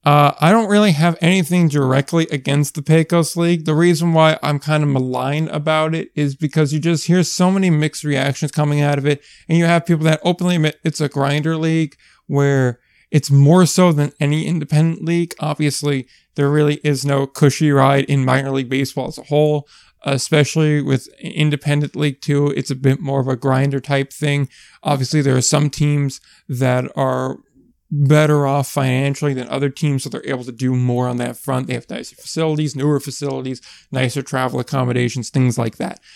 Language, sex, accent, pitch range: English, male, American, 135-160 Hz